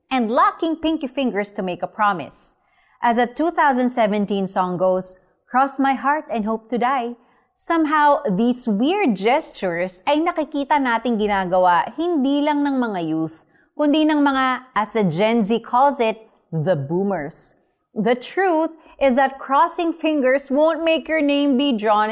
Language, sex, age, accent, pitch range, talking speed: Filipino, female, 30-49, native, 200-295 Hz, 150 wpm